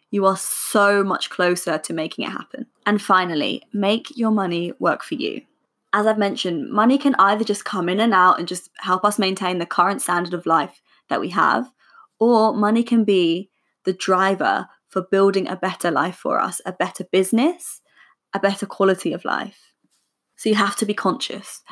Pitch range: 185-230 Hz